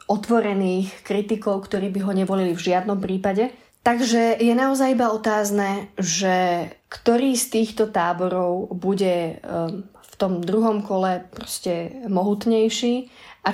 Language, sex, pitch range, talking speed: Slovak, female, 195-225 Hz, 120 wpm